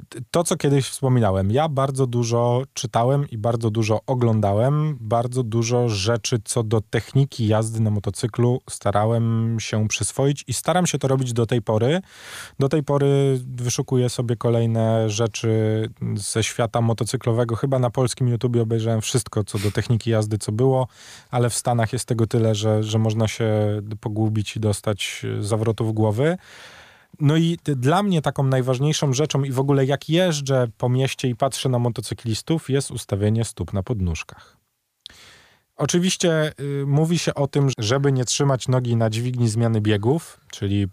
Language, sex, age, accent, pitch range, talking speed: Polish, male, 20-39, native, 110-135 Hz, 155 wpm